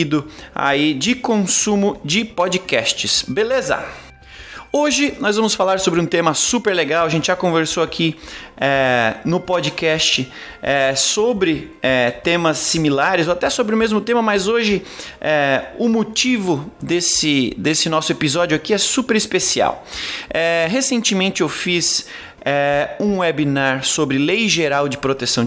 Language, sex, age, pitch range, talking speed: Portuguese, male, 30-49, 150-200 Hz, 125 wpm